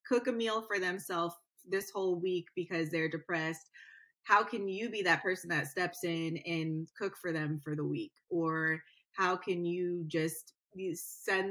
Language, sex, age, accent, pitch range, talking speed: English, female, 20-39, American, 170-195 Hz, 170 wpm